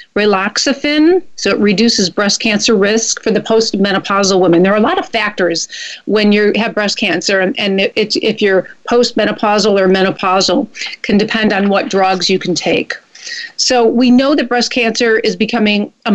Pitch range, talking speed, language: 200-240 Hz, 175 wpm, English